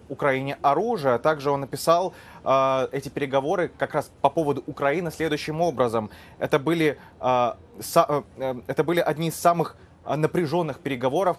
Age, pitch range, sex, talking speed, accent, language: 20-39, 120-150 Hz, male, 140 wpm, native, Russian